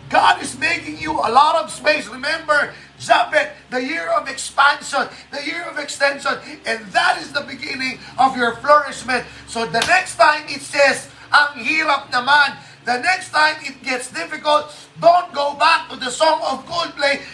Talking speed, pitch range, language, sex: 175 wpm, 250-320 Hz, Filipino, male